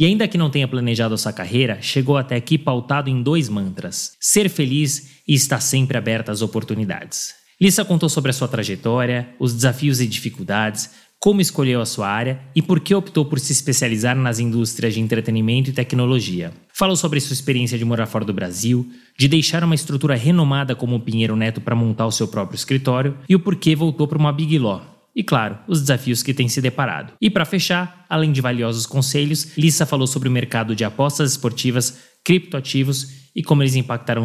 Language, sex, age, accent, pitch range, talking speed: Portuguese, male, 20-39, Brazilian, 115-150 Hz, 195 wpm